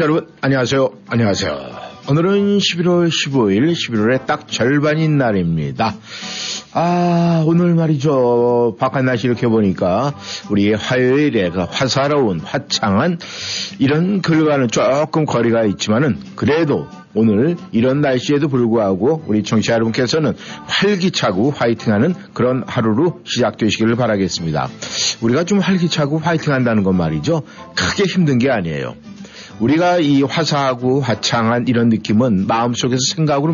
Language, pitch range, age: Korean, 110-155 Hz, 50-69